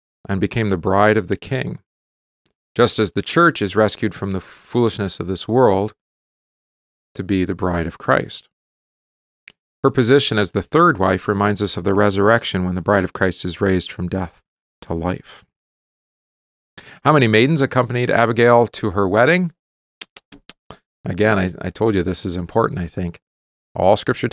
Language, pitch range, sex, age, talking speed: English, 95-115 Hz, male, 40-59, 165 wpm